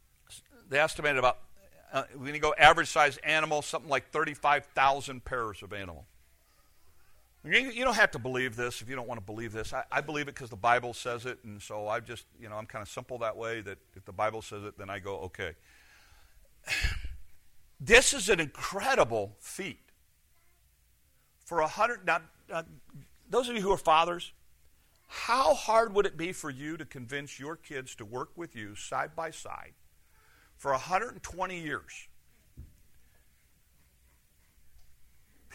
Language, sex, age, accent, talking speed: English, male, 50-69, American, 165 wpm